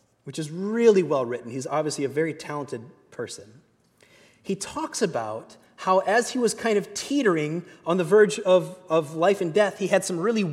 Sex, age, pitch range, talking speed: male, 30-49, 150-210 Hz, 190 wpm